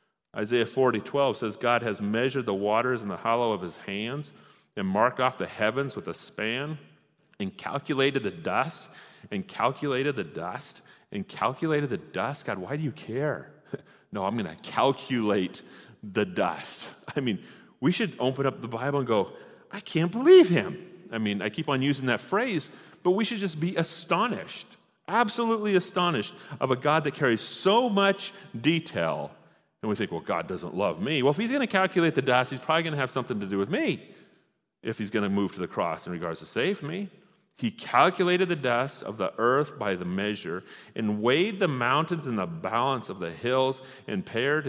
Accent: American